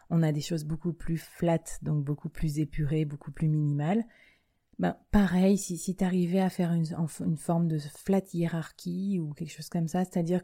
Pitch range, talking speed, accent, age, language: 155-180 Hz, 195 wpm, French, 30-49, French